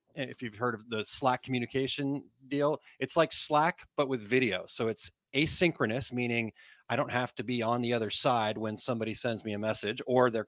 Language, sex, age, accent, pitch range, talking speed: English, male, 30-49, American, 110-130 Hz, 200 wpm